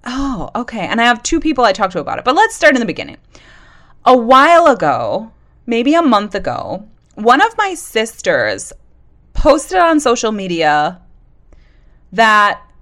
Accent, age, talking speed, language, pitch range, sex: American, 30-49, 160 wpm, English, 195-270 Hz, female